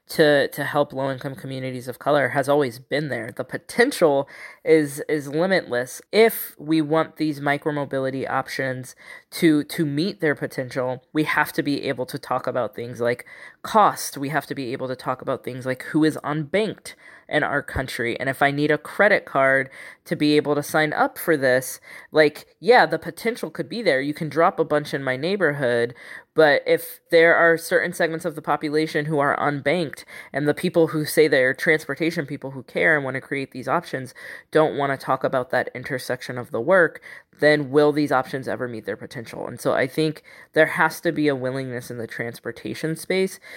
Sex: female